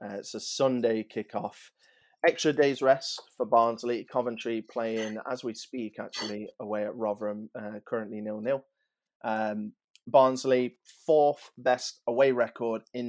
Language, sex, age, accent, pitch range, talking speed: English, male, 30-49, British, 110-125 Hz, 130 wpm